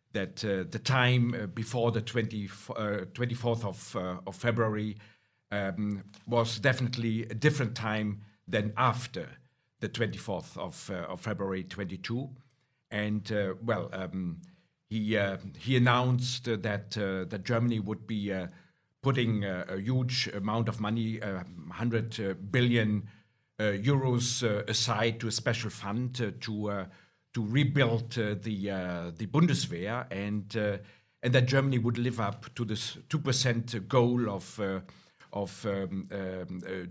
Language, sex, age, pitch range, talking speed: Hungarian, male, 50-69, 100-125 Hz, 145 wpm